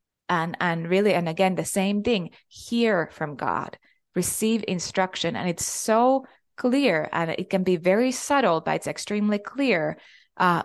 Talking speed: 160 wpm